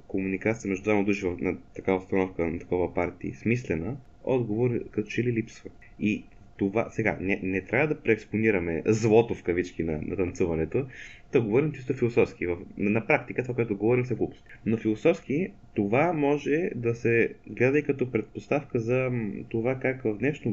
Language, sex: Bulgarian, male